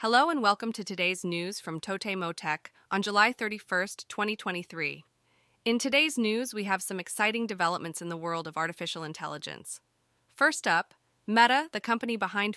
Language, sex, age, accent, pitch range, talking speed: English, female, 30-49, American, 185-235 Hz, 160 wpm